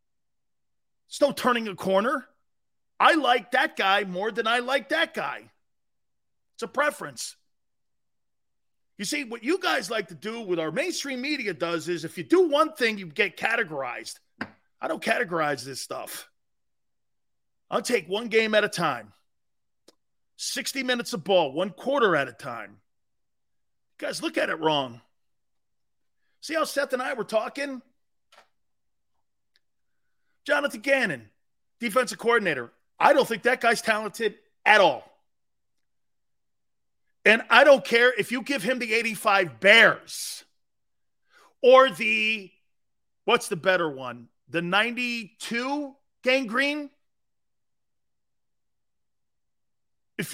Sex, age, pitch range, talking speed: male, 40-59, 185-275 Hz, 130 wpm